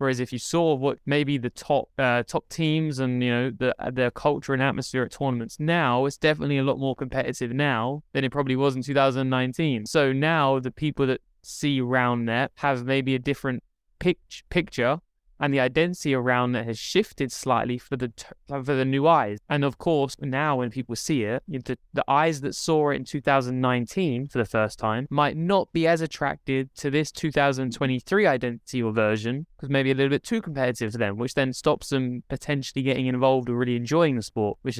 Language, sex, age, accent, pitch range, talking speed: English, male, 10-29, British, 125-145 Hz, 205 wpm